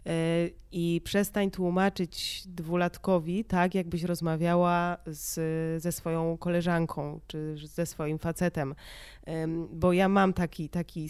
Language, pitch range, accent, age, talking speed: Polish, 170-215 Hz, native, 20-39, 105 wpm